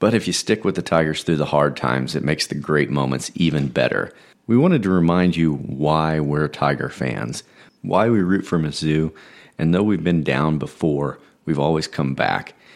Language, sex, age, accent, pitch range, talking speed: English, male, 40-59, American, 75-90 Hz, 200 wpm